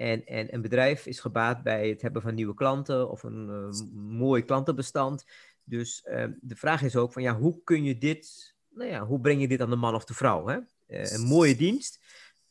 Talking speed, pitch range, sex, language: 225 wpm, 115-145 Hz, male, Dutch